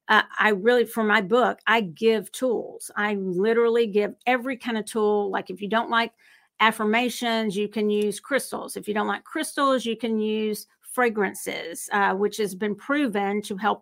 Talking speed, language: 180 wpm, English